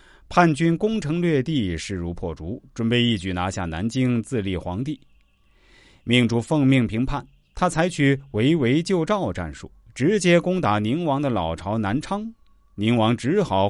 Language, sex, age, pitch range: Chinese, male, 30-49, 95-150 Hz